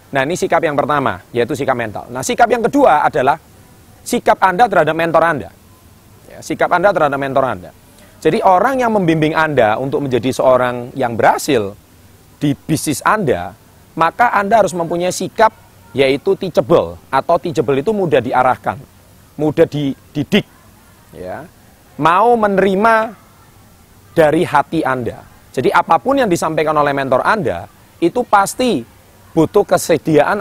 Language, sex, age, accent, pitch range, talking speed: Indonesian, male, 30-49, native, 120-170 Hz, 130 wpm